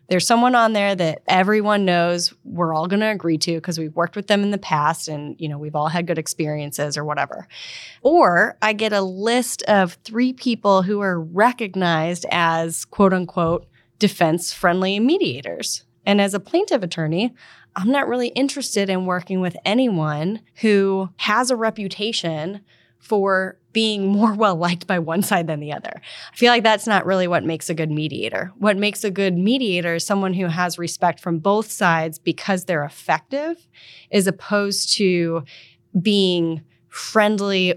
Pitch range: 170-210 Hz